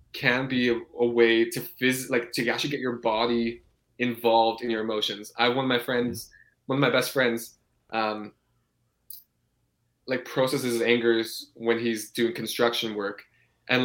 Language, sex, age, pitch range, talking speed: English, male, 20-39, 115-125 Hz, 160 wpm